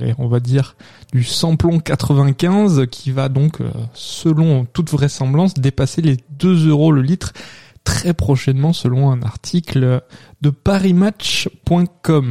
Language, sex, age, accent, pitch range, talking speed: French, male, 20-39, French, 130-165 Hz, 120 wpm